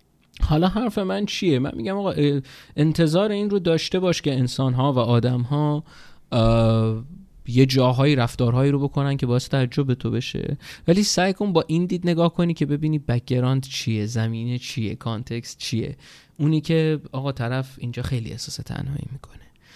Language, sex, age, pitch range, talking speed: Persian, male, 20-39, 120-150 Hz, 165 wpm